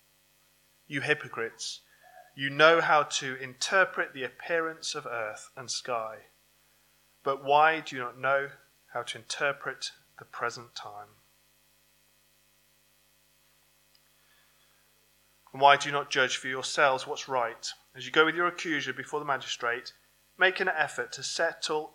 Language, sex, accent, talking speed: English, male, British, 135 wpm